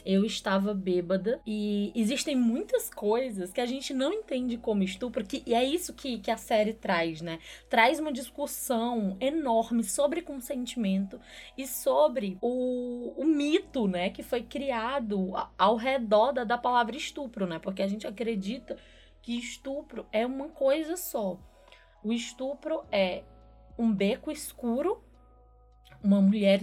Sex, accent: female, Brazilian